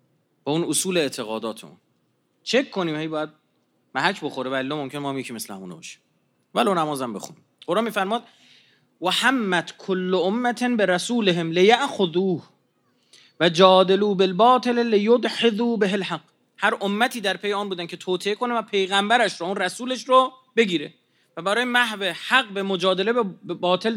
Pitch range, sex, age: 185-230 Hz, male, 30-49